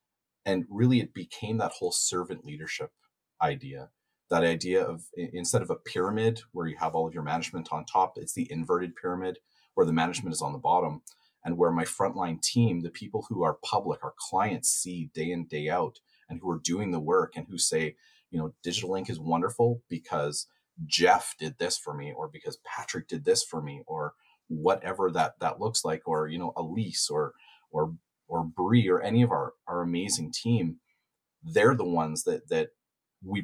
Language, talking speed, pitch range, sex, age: English, 195 wpm, 85-135 Hz, male, 40-59